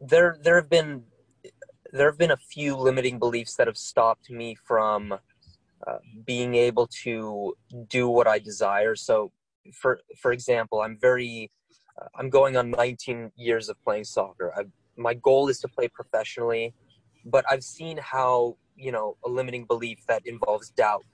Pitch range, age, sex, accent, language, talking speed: 115-140 Hz, 20-39, male, American, English, 160 wpm